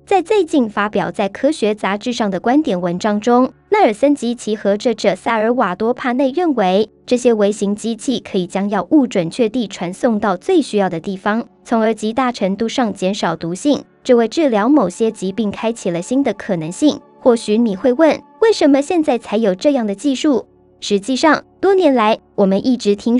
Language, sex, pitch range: Chinese, male, 200-260 Hz